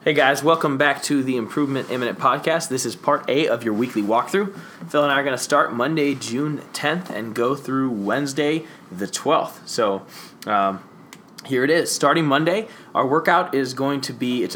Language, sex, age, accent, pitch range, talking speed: English, male, 20-39, American, 125-160 Hz, 195 wpm